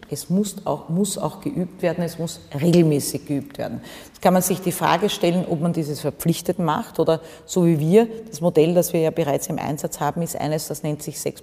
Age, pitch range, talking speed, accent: 40-59, 150-175 Hz, 220 wpm, Austrian